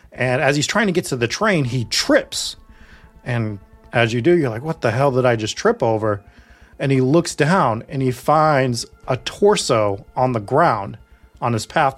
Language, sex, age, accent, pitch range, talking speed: English, male, 30-49, American, 120-165 Hz, 200 wpm